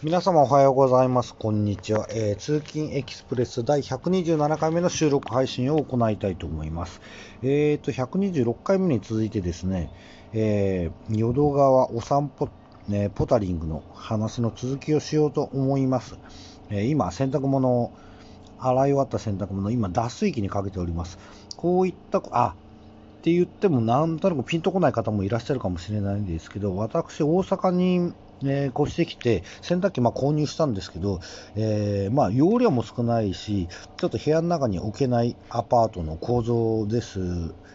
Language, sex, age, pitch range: Japanese, male, 40-59, 100-140 Hz